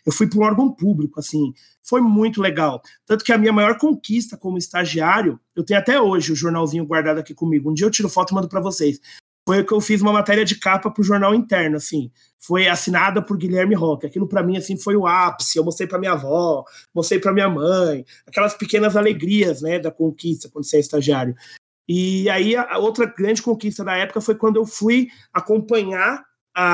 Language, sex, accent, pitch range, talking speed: Portuguese, male, Brazilian, 160-205 Hz, 210 wpm